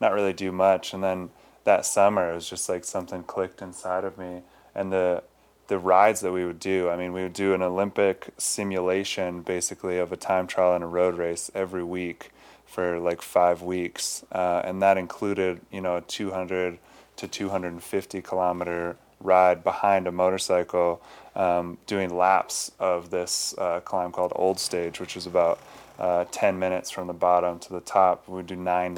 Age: 20-39